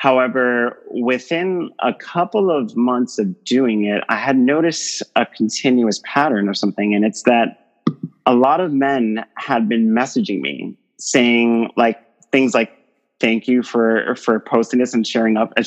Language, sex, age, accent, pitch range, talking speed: English, male, 30-49, American, 110-130 Hz, 160 wpm